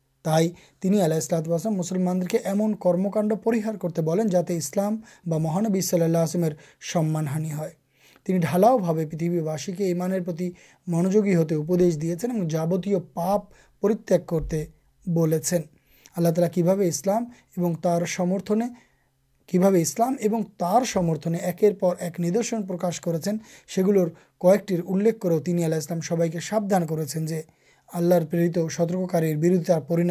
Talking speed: 110 wpm